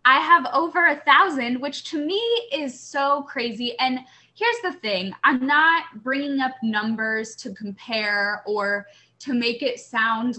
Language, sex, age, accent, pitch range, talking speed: English, female, 10-29, American, 215-275 Hz, 155 wpm